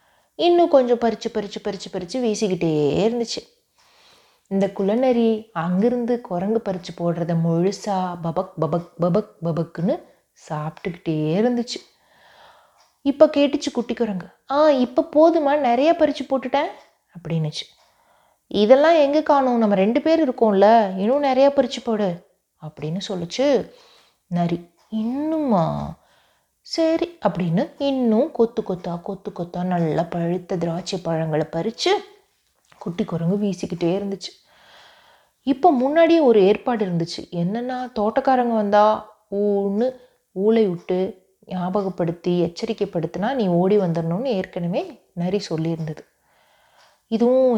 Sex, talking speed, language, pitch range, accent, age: female, 105 wpm, Tamil, 180-250 Hz, native, 30-49